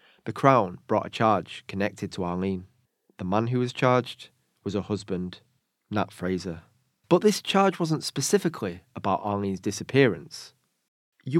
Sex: male